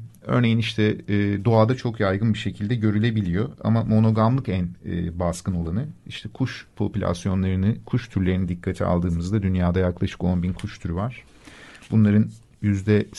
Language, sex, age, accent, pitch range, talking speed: Turkish, male, 50-69, native, 90-110 Hz, 125 wpm